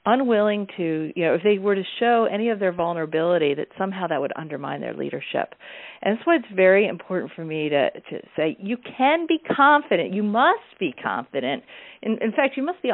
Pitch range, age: 175-230 Hz, 50-69